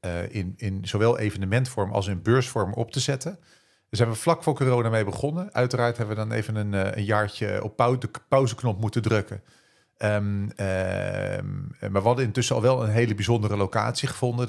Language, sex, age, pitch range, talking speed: Dutch, male, 40-59, 105-125 Hz, 195 wpm